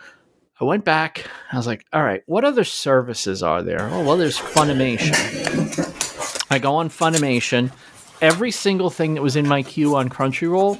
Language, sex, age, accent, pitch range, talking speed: English, male, 40-59, American, 120-155 Hz, 170 wpm